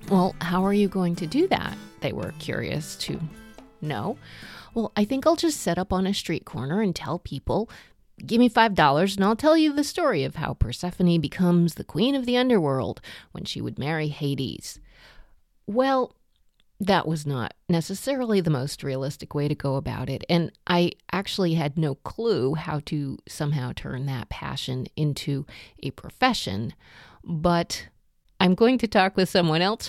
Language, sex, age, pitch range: English, female, 30-49, 145-200 Hz